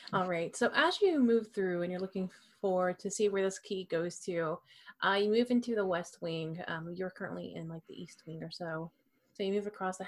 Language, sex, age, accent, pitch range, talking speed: English, female, 30-49, American, 175-215 Hz, 240 wpm